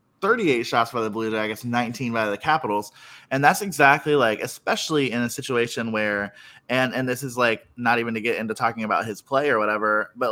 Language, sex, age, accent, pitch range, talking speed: English, male, 20-39, American, 110-130 Hz, 210 wpm